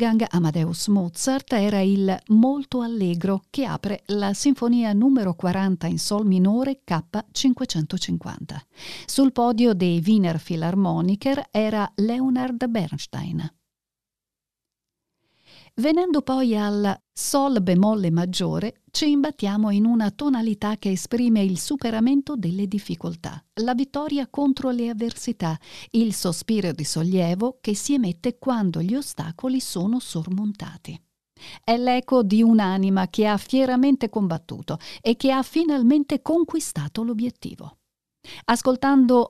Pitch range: 180-250 Hz